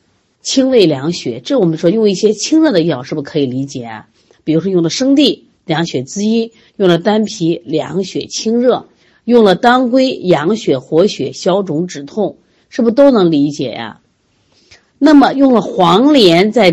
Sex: female